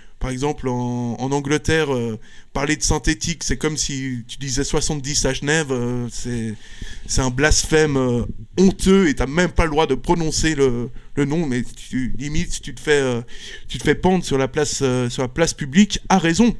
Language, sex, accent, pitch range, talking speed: French, male, French, 125-150 Hz, 205 wpm